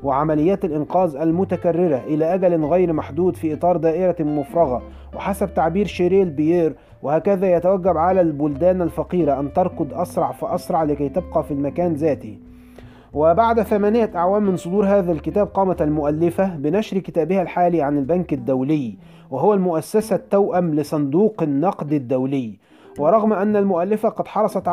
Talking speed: 135 wpm